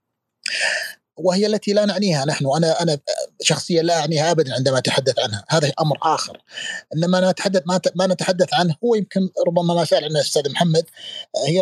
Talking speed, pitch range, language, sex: 160 wpm, 155-200 Hz, Arabic, male